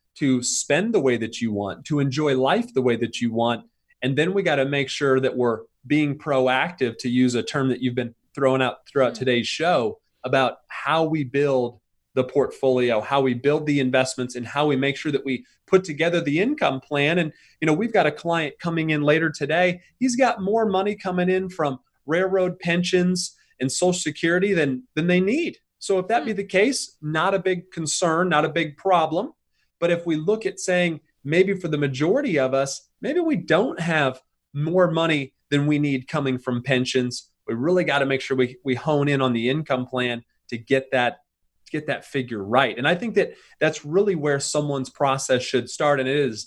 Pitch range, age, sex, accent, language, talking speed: 130-180 Hz, 30-49, male, American, English, 205 wpm